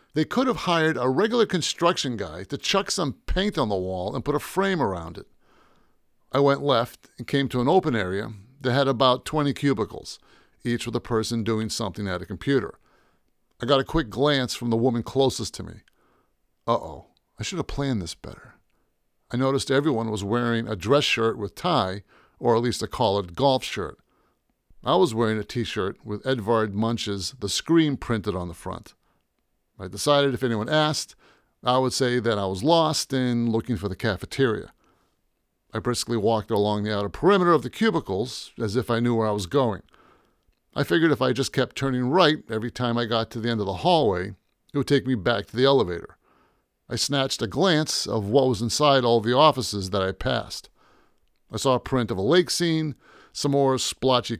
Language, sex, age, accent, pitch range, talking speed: English, male, 50-69, American, 110-140 Hz, 200 wpm